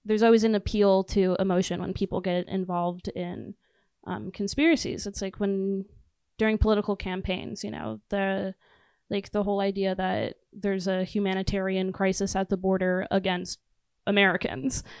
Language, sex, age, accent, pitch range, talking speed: English, female, 10-29, American, 190-215 Hz, 145 wpm